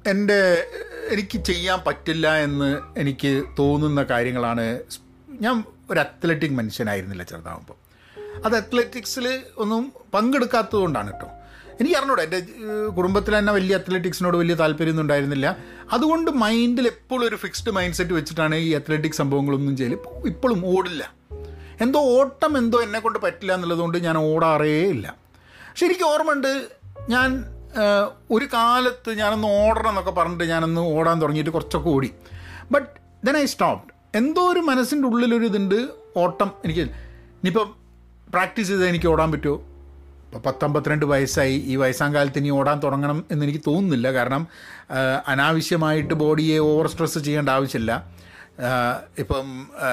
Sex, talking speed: male, 120 wpm